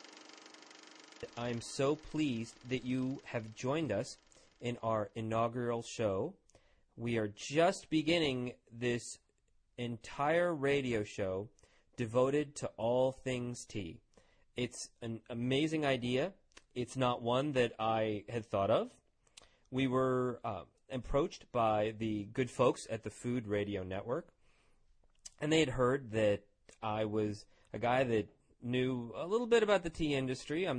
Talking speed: 135 wpm